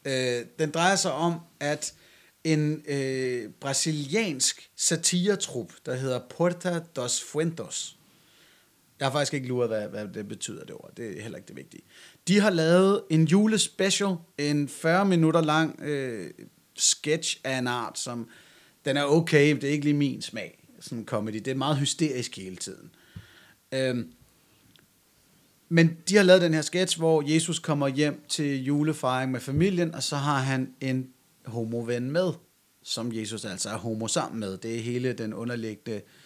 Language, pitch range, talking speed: Danish, 125-165 Hz, 165 wpm